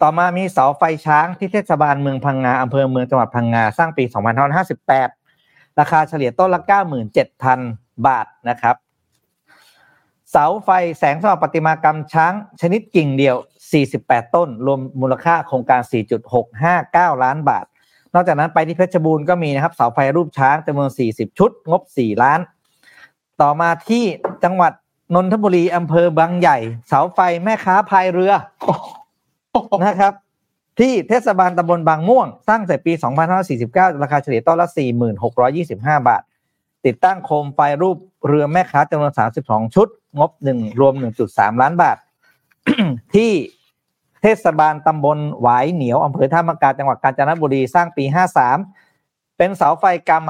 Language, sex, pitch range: Thai, male, 135-180 Hz